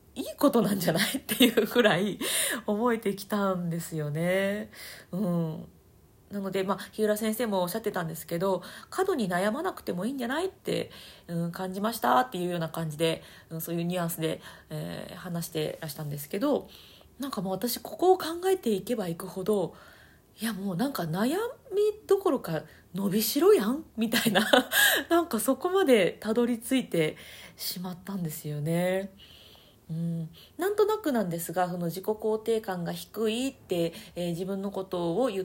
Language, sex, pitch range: Japanese, female, 170-235 Hz